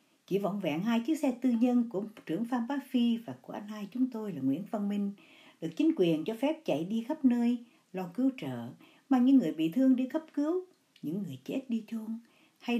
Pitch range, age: 185-270 Hz, 60-79